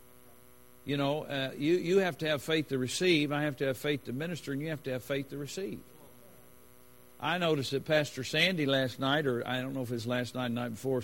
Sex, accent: male, American